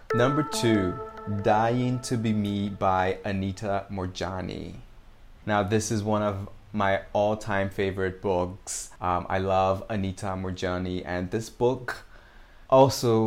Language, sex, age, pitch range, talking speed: English, male, 20-39, 95-110 Hz, 120 wpm